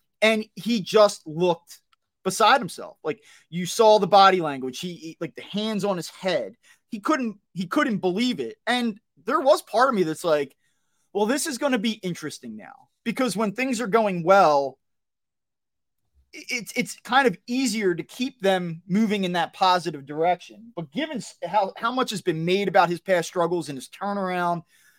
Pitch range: 175-230 Hz